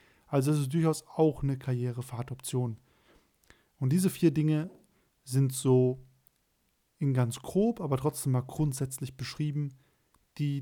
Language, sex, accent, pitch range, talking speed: German, male, German, 130-155 Hz, 125 wpm